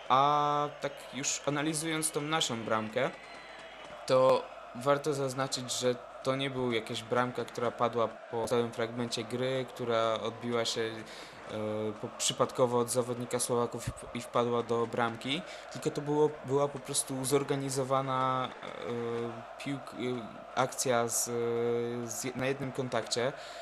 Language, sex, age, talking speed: Polish, male, 20-39, 110 wpm